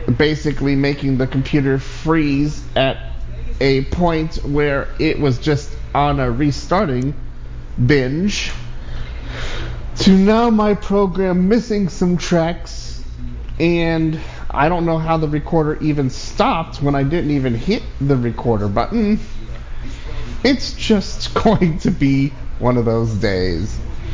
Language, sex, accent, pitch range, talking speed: English, male, American, 120-175 Hz, 120 wpm